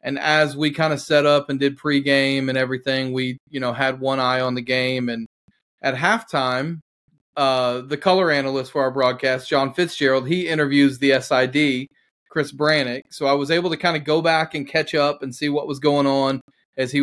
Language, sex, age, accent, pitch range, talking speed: English, male, 30-49, American, 130-150 Hz, 210 wpm